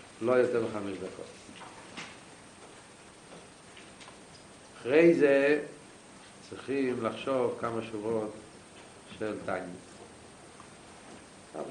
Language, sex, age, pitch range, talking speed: Hebrew, male, 60-79, 105-145 Hz, 65 wpm